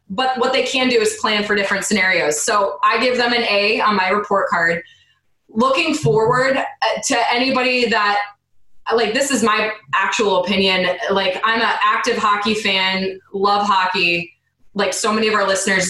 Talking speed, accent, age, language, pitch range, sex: 170 wpm, American, 20-39, English, 190-230 Hz, female